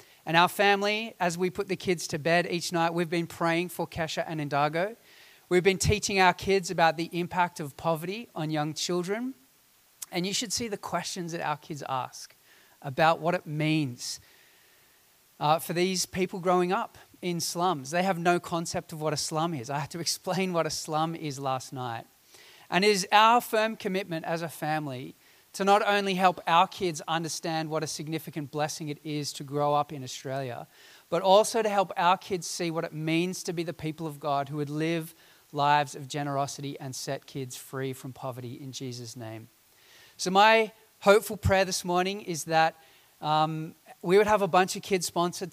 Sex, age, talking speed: male, 30-49, 195 wpm